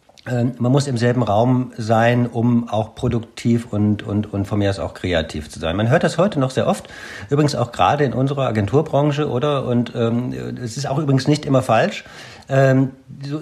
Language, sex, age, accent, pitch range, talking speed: German, male, 50-69, German, 105-130 Hz, 195 wpm